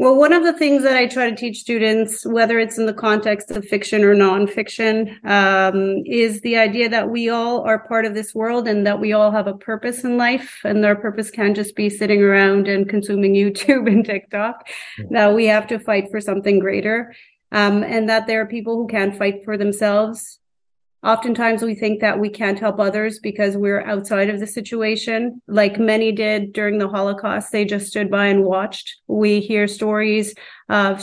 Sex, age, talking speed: female, 30-49, 200 wpm